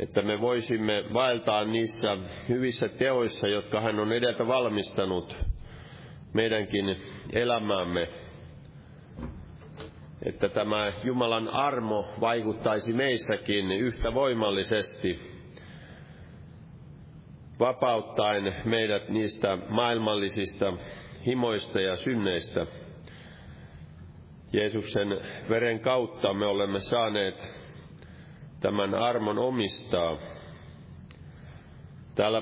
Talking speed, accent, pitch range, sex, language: 70 wpm, native, 100-115 Hz, male, Finnish